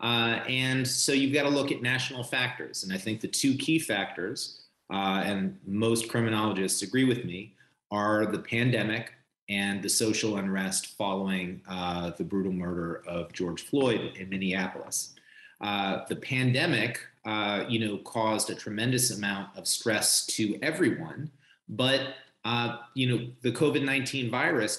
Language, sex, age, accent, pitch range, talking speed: English, male, 30-49, American, 95-120 Hz, 150 wpm